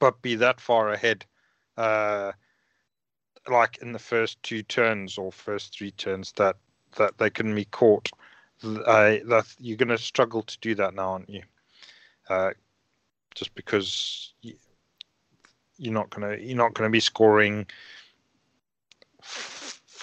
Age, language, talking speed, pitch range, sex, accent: 30-49, English, 135 wpm, 100-115 Hz, male, British